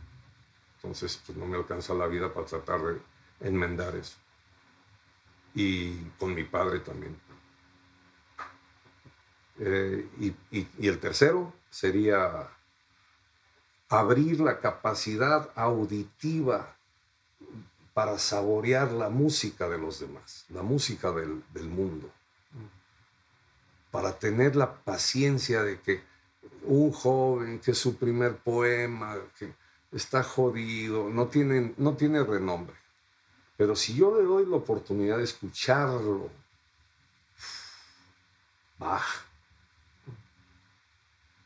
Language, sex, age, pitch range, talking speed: Spanish, male, 50-69, 90-135 Hz, 100 wpm